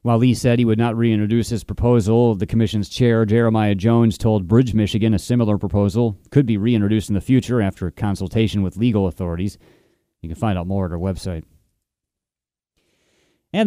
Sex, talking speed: male, 180 wpm